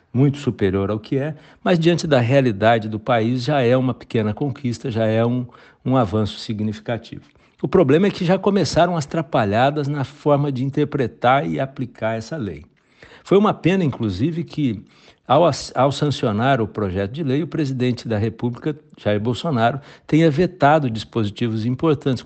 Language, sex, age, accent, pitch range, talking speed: Portuguese, male, 60-79, Brazilian, 110-150 Hz, 160 wpm